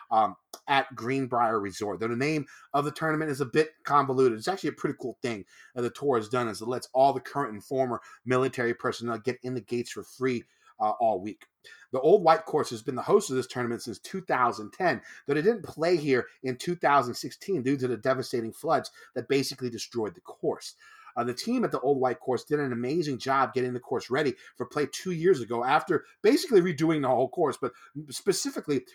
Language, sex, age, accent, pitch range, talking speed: English, male, 30-49, American, 125-175 Hz, 215 wpm